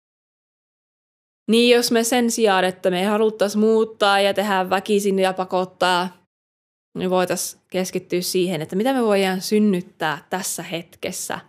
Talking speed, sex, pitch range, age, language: 135 wpm, female, 175-210 Hz, 20-39, Finnish